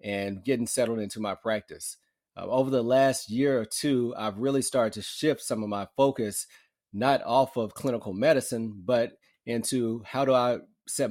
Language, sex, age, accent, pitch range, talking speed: English, male, 30-49, American, 105-130 Hz, 180 wpm